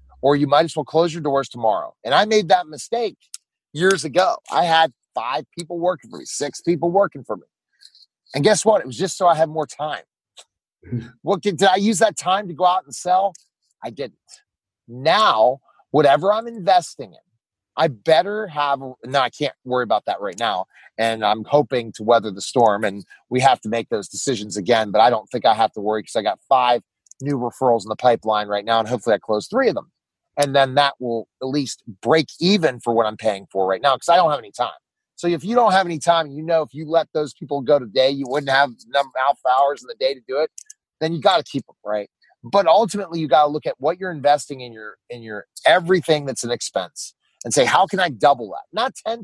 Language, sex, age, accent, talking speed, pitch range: English, male, 30-49, American, 235 wpm, 120-175 Hz